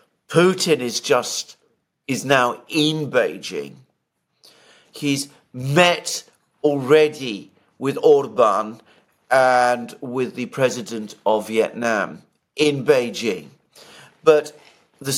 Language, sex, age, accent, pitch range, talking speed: English, male, 50-69, British, 125-160 Hz, 85 wpm